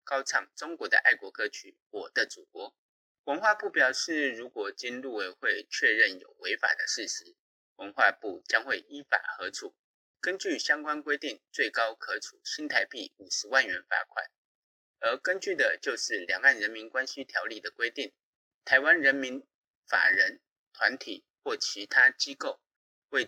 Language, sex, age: Chinese, male, 30-49